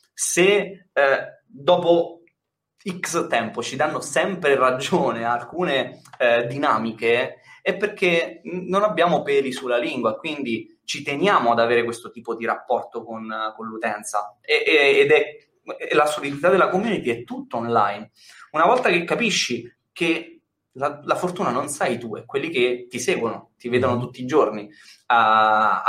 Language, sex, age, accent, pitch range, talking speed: Italian, male, 20-39, native, 115-180 Hz, 155 wpm